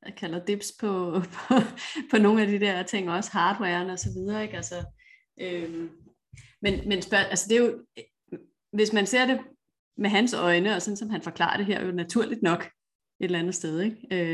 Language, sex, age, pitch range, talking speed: Danish, female, 30-49, 175-215 Hz, 210 wpm